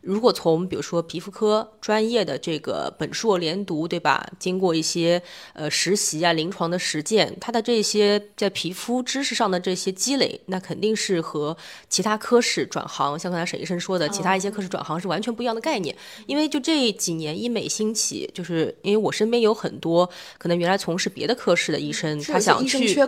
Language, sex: Chinese, female